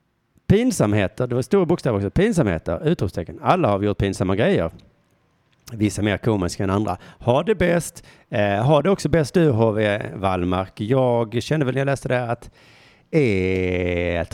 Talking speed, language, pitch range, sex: 170 wpm, Swedish, 95-140 Hz, male